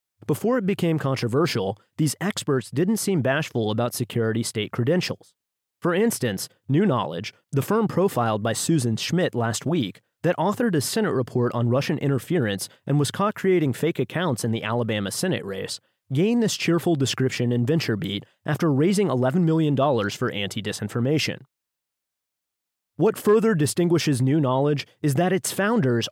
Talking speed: 150 wpm